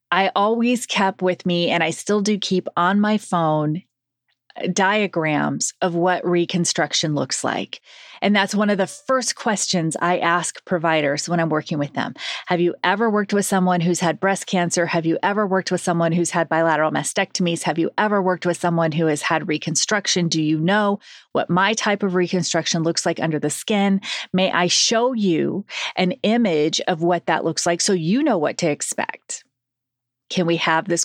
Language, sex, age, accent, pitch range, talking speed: English, female, 30-49, American, 165-215 Hz, 190 wpm